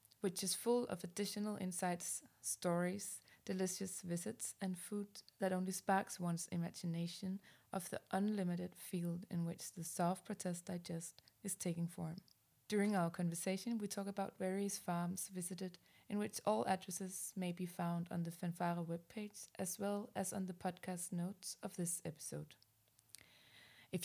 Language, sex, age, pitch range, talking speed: English, female, 20-39, 170-190 Hz, 150 wpm